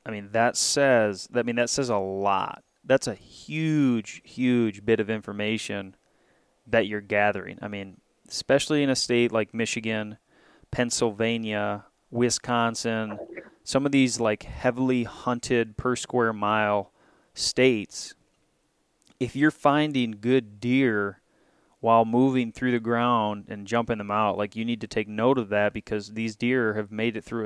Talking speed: 155 wpm